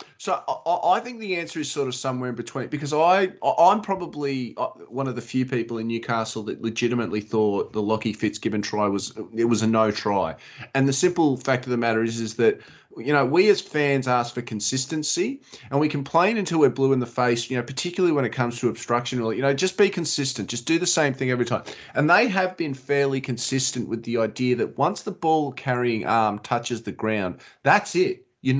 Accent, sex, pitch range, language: Australian, male, 120-155 Hz, English